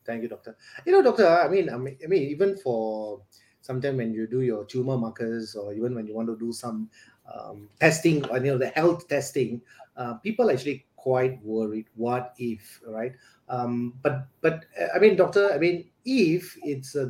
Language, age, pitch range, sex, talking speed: English, 30-49, 120-165 Hz, male, 200 wpm